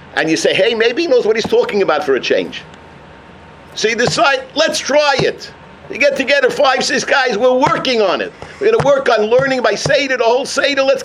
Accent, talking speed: American, 230 wpm